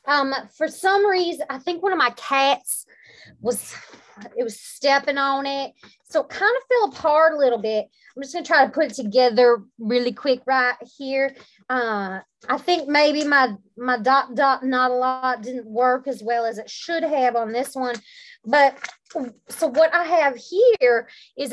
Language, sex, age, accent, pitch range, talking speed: English, female, 30-49, American, 245-310 Hz, 185 wpm